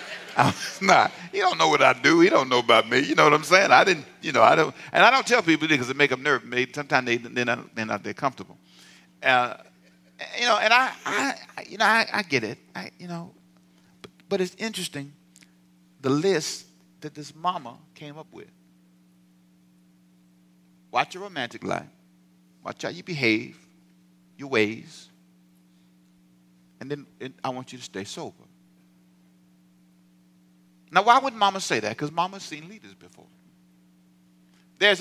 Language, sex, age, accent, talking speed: English, male, 50-69, American, 170 wpm